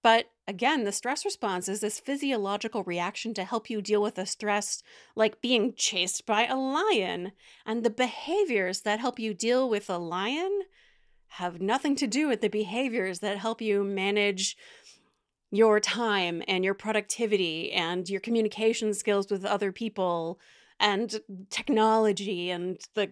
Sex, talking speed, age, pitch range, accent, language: female, 155 wpm, 30-49, 195-250 Hz, American, English